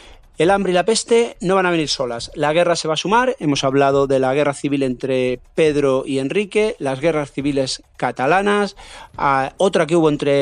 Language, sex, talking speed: Spanish, male, 195 wpm